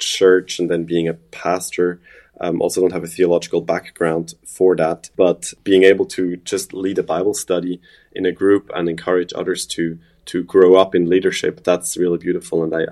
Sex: male